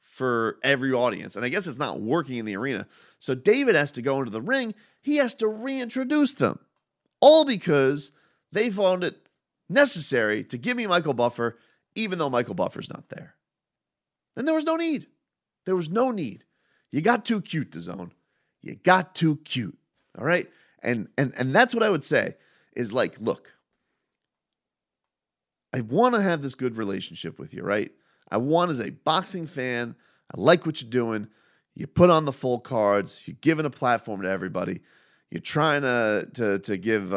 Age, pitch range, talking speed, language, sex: 30-49, 120-200 Hz, 180 wpm, English, male